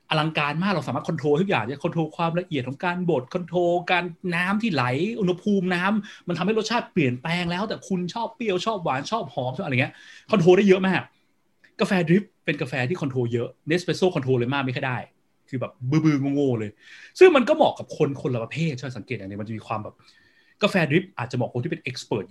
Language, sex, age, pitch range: Thai, male, 20-39, 125-190 Hz